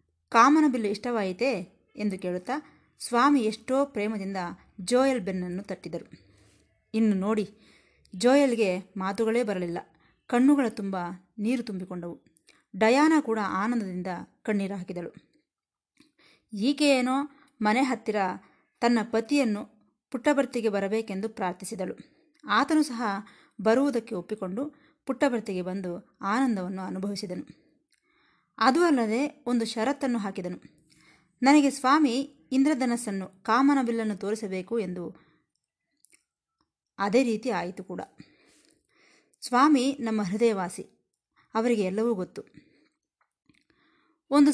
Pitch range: 195-275 Hz